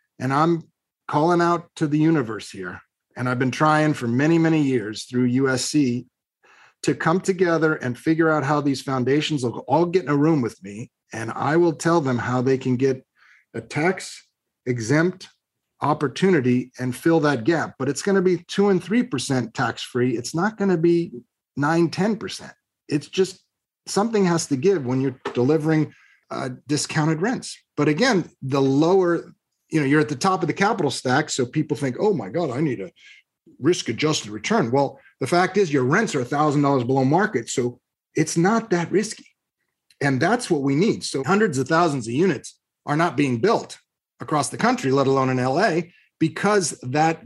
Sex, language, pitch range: male, English, 135-175 Hz